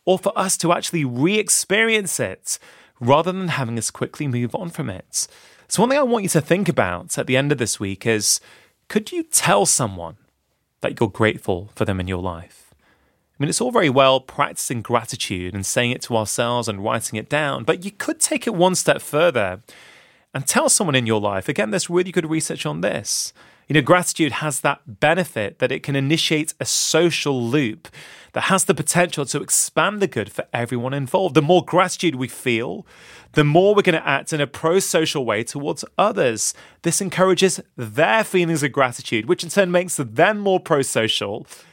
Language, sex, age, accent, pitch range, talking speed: English, male, 30-49, British, 115-175 Hz, 195 wpm